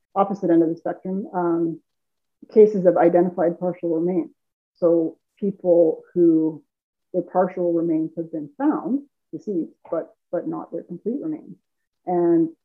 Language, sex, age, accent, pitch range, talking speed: English, female, 30-49, American, 160-180 Hz, 135 wpm